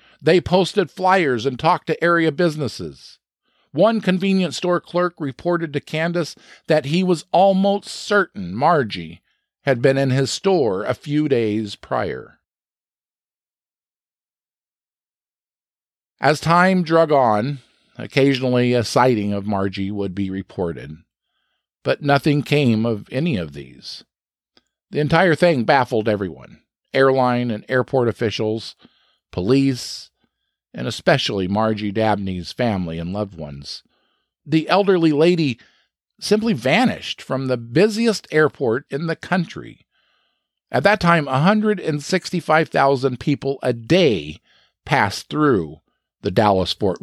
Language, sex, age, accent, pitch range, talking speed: English, male, 50-69, American, 115-175 Hz, 115 wpm